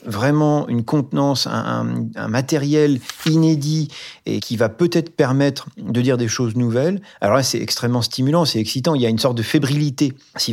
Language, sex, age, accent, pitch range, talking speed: French, male, 40-59, French, 120-155 Hz, 190 wpm